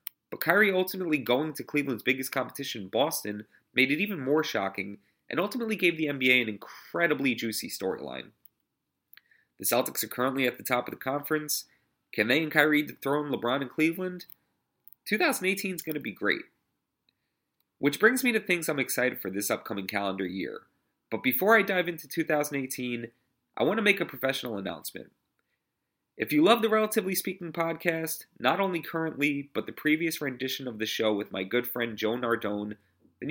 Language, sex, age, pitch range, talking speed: English, male, 30-49, 115-165 Hz, 175 wpm